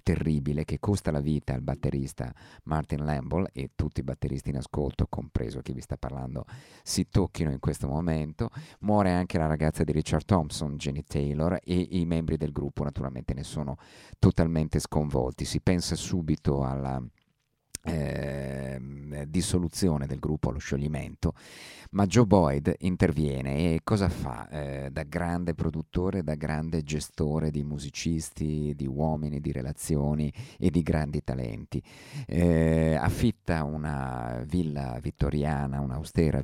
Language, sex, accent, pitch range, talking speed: Italian, male, native, 70-90 Hz, 140 wpm